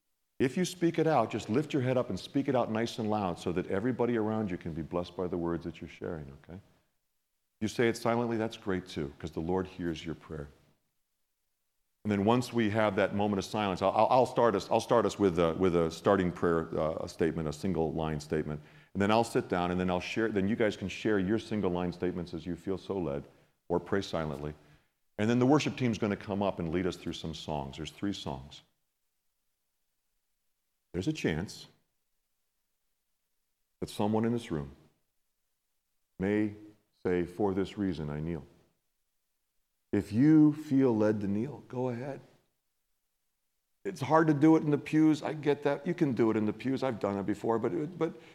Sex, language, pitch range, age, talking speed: male, English, 90-140 Hz, 50-69, 205 wpm